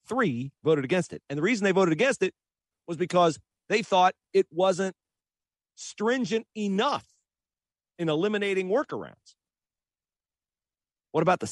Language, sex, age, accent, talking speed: English, male, 40-59, American, 130 wpm